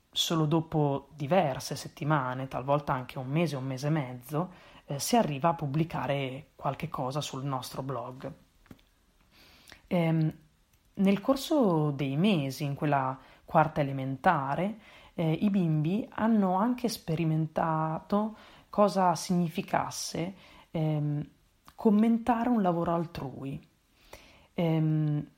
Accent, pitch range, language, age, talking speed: native, 145-180 Hz, Italian, 30-49, 105 wpm